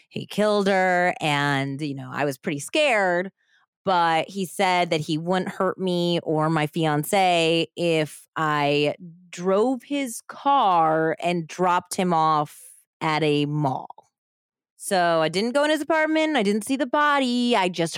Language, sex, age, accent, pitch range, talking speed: English, female, 20-39, American, 155-235 Hz, 155 wpm